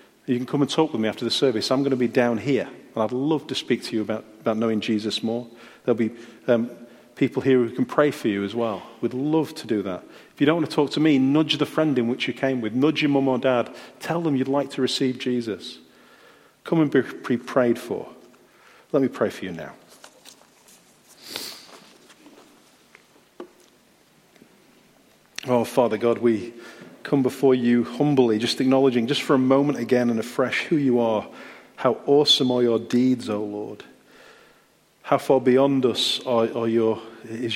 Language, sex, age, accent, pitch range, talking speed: English, male, 40-59, British, 115-135 Hz, 190 wpm